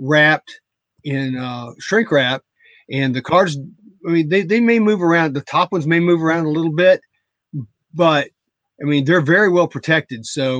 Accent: American